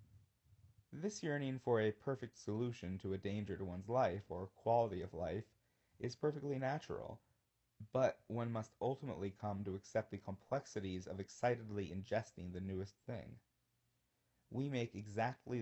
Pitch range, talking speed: 100-120 Hz, 140 wpm